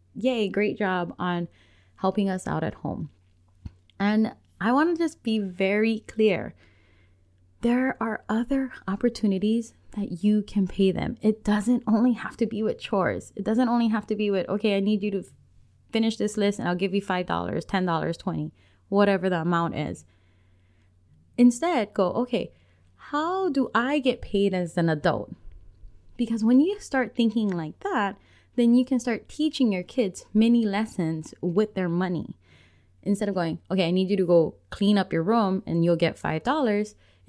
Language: English